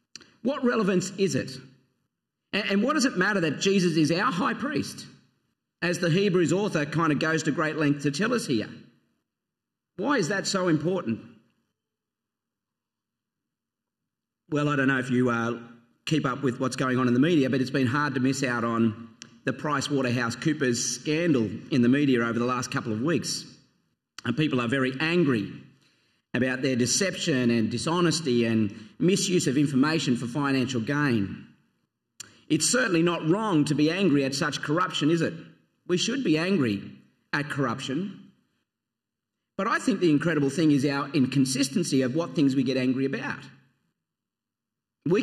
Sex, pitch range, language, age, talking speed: male, 125-170 Hz, English, 40-59, 165 wpm